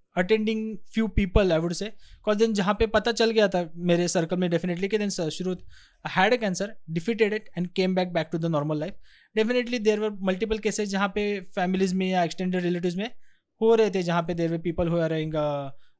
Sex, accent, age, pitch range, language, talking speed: male, native, 20-39, 165-220 Hz, Hindi, 190 wpm